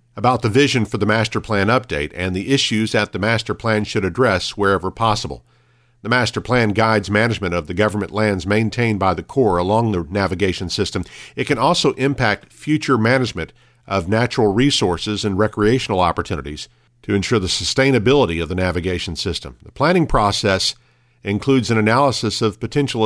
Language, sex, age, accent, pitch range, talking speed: English, male, 50-69, American, 100-125 Hz, 165 wpm